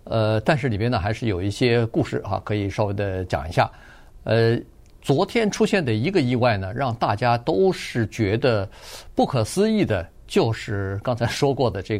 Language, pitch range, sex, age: Chinese, 105-140 Hz, male, 50-69